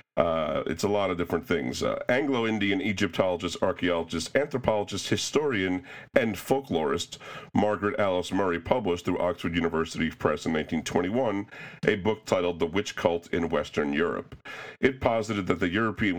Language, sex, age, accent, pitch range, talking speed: English, male, 40-59, American, 90-110 Hz, 145 wpm